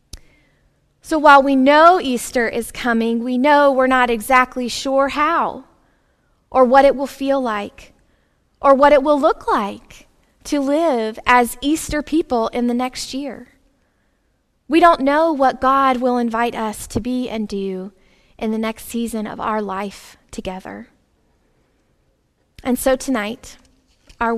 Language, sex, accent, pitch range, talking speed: English, female, American, 230-275 Hz, 145 wpm